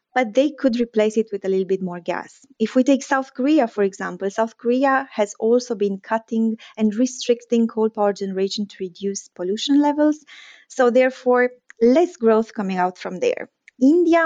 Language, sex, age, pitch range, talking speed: English, female, 20-39, 205-255 Hz, 175 wpm